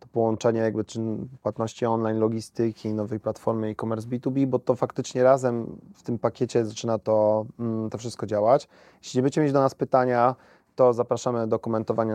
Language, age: Polish, 30-49